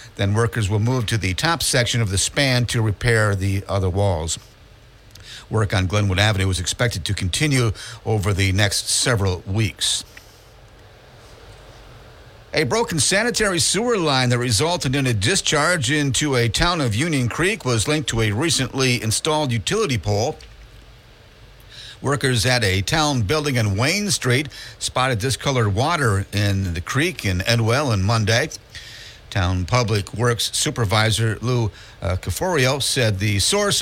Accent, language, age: American, English, 50-69